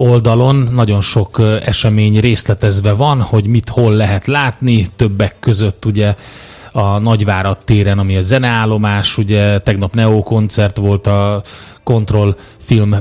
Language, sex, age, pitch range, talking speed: Hungarian, male, 30-49, 100-120 Hz, 130 wpm